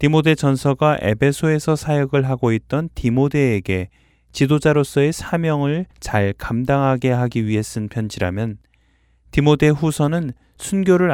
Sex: male